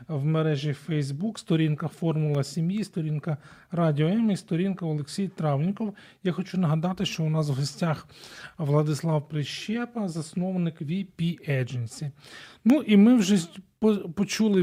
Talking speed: 125 wpm